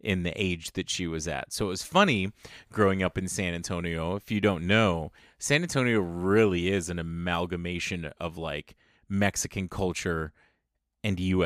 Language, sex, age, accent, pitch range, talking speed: English, male, 30-49, American, 90-105 Hz, 170 wpm